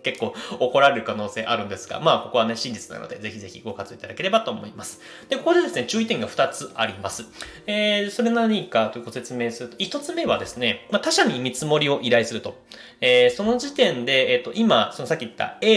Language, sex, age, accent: Japanese, male, 20-39, native